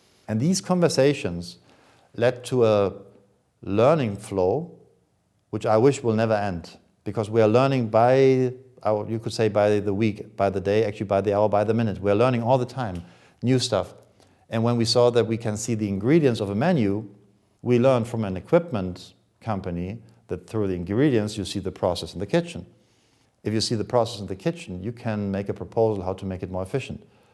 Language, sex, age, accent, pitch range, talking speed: English, male, 50-69, German, 100-125 Hz, 200 wpm